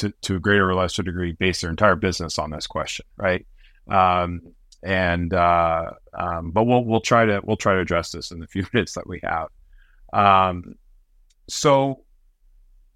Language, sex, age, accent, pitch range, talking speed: English, male, 30-49, American, 85-110 Hz, 175 wpm